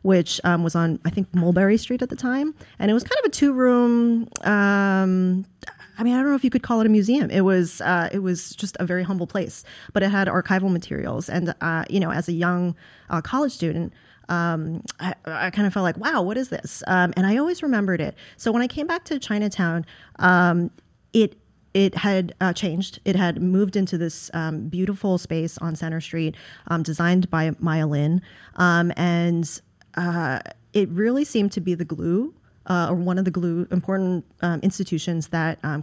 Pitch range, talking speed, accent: 165-200 Hz, 205 wpm, American